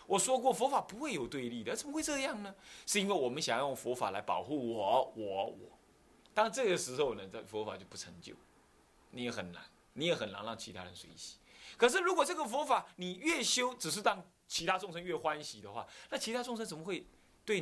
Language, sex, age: Chinese, male, 20-39